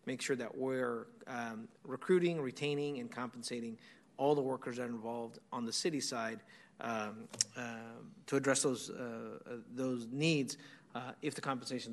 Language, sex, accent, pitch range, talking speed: English, male, American, 120-145 Hz, 160 wpm